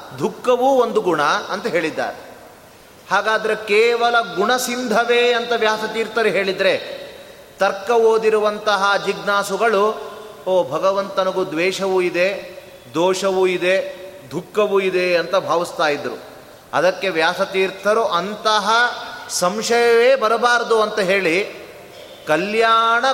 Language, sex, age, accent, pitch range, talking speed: Kannada, male, 30-49, native, 190-230 Hz, 85 wpm